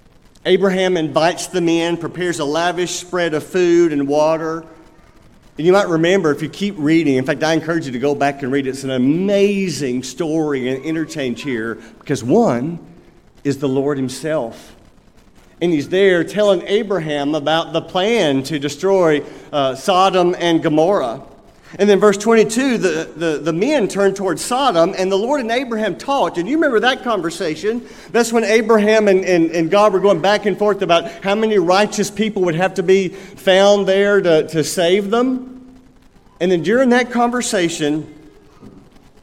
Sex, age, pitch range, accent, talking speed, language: male, 50-69, 155-205 Hz, American, 170 wpm, English